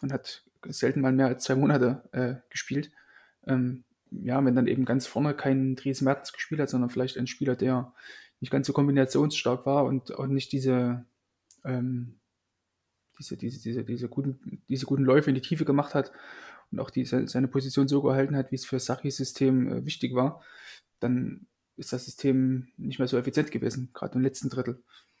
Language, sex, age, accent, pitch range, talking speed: German, male, 20-39, German, 125-135 Hz, 190 wpm